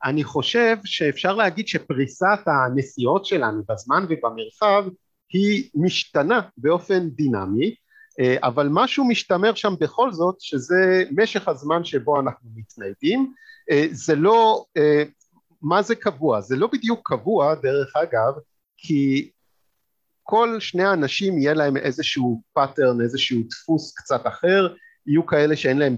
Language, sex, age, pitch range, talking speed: Hebrew, male, 50-69, 130-200 Hz, 120 wpm